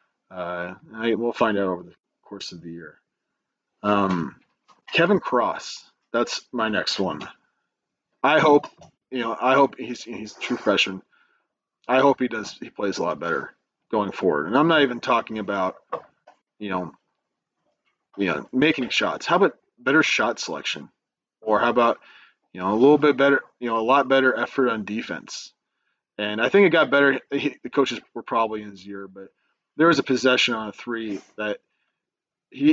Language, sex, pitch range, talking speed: English, male, 105-140 Hz, 180 wpm